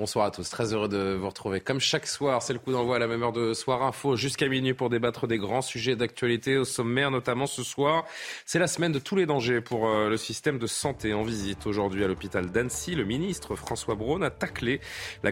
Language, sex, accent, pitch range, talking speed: French, male, French, 115-160 Hz, 235 wpm